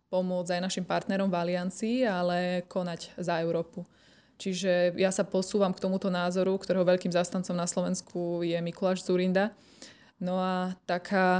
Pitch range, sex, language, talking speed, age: 180-195 Hz, female, Slovak, 145 wpm, 20-39